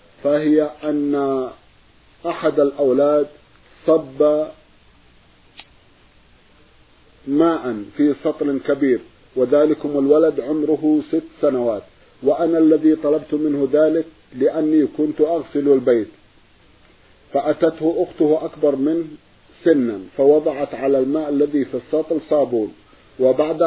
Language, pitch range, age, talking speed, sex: Arabic, 145-160 Hz, 50-69, 90 wpm, male